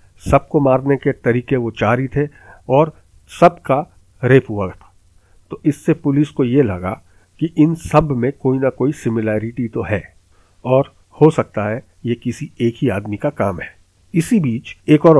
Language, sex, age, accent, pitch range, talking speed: Hindi, male, 50-69, native, 110-145 Hz, 180 wpm